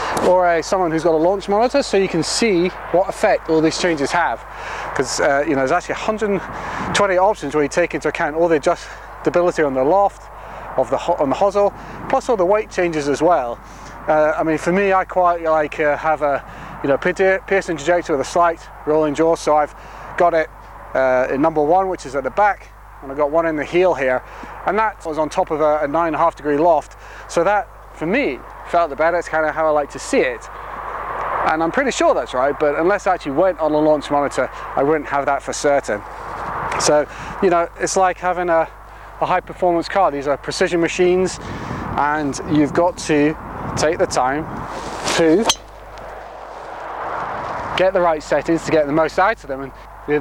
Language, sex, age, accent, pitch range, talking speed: English, male, 30-49, British, 150-180 Hz, 215 wpm